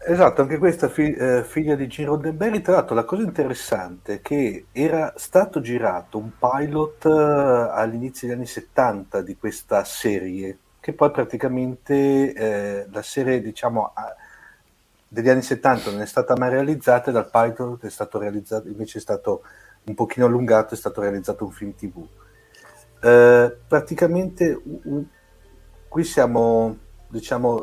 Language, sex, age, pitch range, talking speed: Italian, male, 50-69, 105-135 Hz, 150 wpm